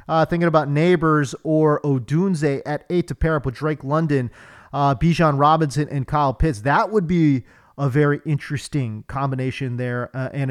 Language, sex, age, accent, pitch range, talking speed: English, male, 30-49, American, 140-225 Hz, 170 wpm